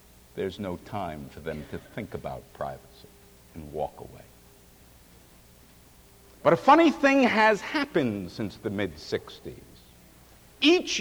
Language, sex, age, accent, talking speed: English, male, 60-79, American, 120 wpm